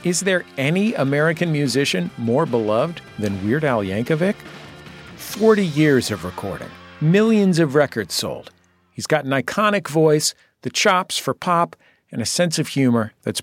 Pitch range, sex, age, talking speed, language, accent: 120-165 Hz, male, 50-69, 150 wpm, English, American